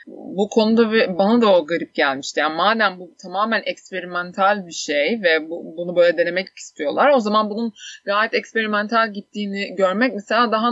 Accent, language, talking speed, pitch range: native, Turkish, 160 wpm, 170-220 Hz